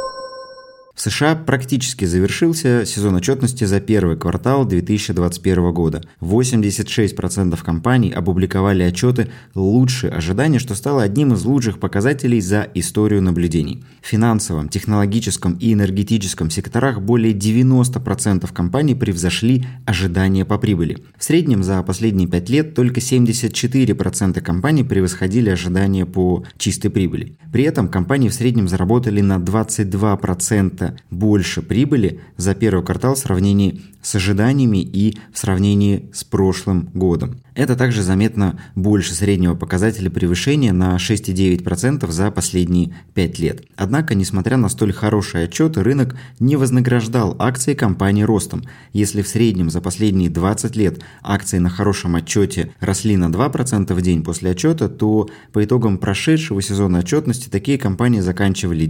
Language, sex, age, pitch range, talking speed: Russian, male, 20-39, 95-125 Hz, 130 wpm